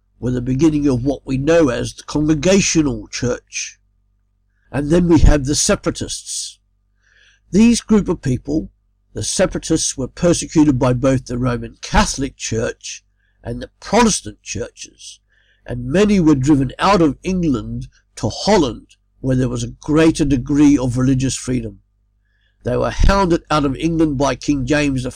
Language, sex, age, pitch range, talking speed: English, male, 60-79, 120-160 Hz, 150 wpm